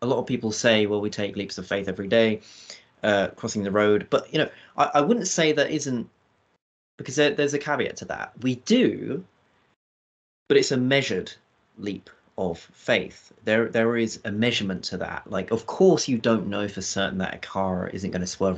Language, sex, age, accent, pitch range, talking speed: English, male, 30-49, British, 105-130 Hz, 205 wpm